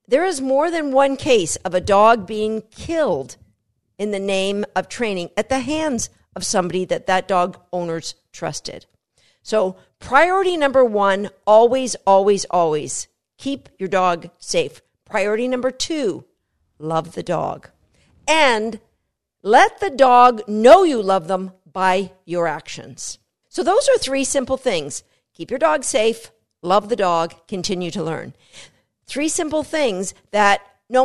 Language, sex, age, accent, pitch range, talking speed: English, female, 50-69, American, 185-260 Hz, 145 wpm